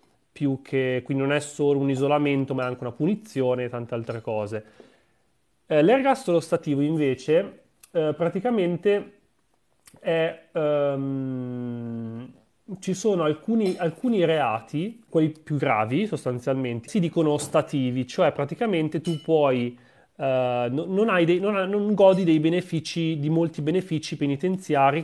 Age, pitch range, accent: 30-49, 130-165 Hz, native